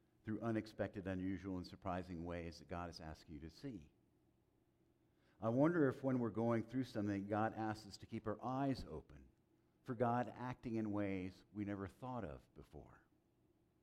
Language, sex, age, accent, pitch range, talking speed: English, male, 50-69, American, 95-120 Hz, 170 wpm